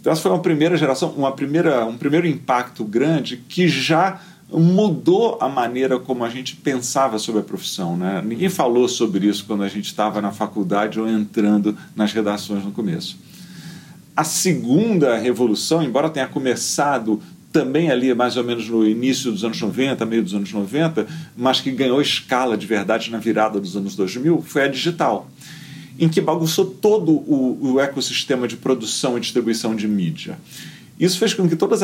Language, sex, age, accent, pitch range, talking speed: Portuguese, male, 40-59, Brazilian, 120-170 Hz, 170 wpm